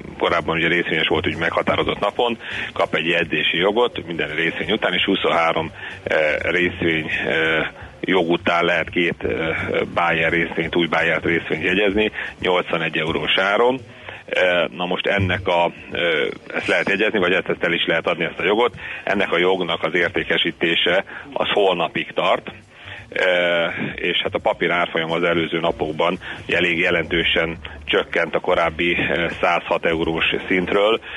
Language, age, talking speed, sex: Hungarian, 40-59, 135 wpm, male